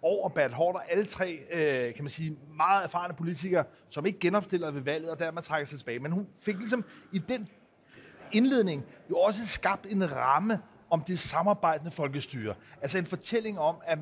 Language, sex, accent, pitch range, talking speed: Danish, male, native, 150-195 Hz, 180 wpm